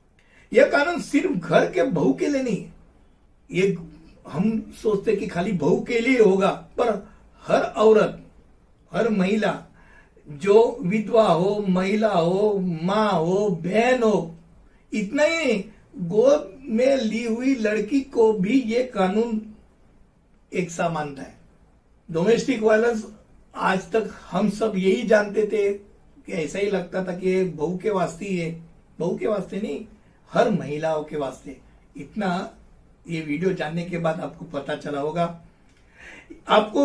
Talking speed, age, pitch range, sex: 145 wpm, 60-79, 175-220 Hz, male